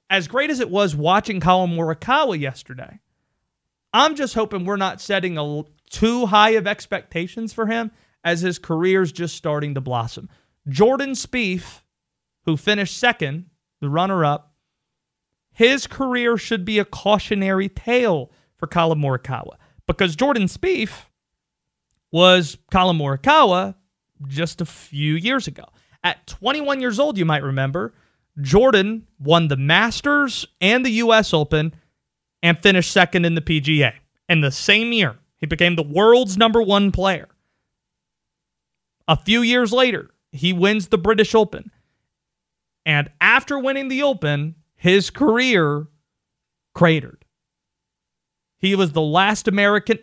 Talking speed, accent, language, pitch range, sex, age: 130 wpm, American, English, 155-215 Hz, male, 30-49